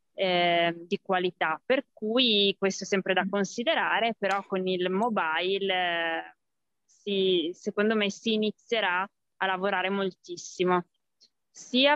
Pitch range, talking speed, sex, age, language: 185-220 Hz, 125 wpm, female, 20-39, Italian